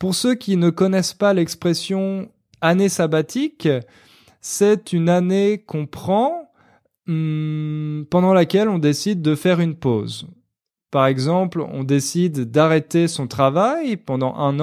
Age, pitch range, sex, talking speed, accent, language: 20-39, 140-190 Hz, male, 130 wpm, French, French